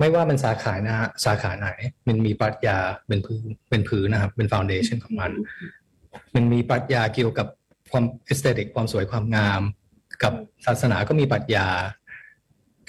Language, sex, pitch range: Thai, male, 105-130 Hz